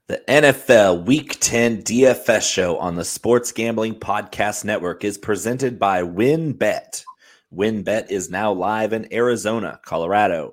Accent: American